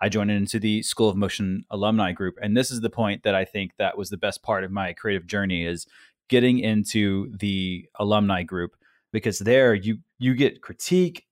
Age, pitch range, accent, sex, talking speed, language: 20-39, 100-125 Hz, American, male, 200 wpm, English